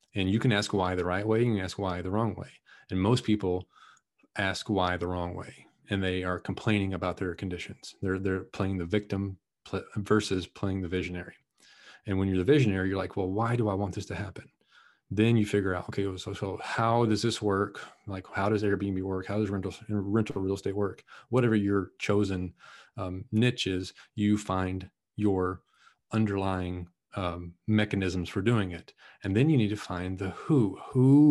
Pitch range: 95-105 Hz